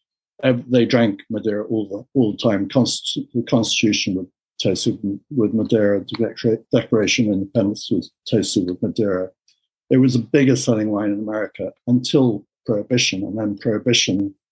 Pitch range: 105-125 Hz